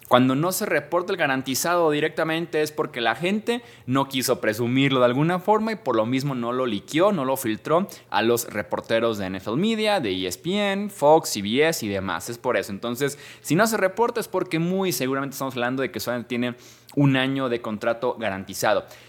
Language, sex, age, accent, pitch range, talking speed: Spanish, male, 20-39, Mexican, 115-160 Hz, 195 wpm